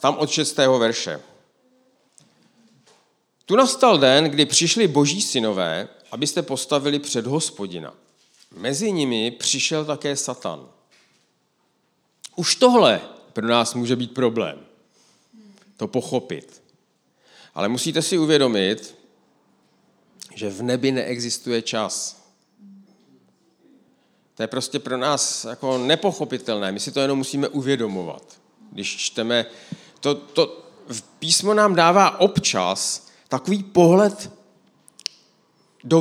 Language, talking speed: Czech, 105 wpm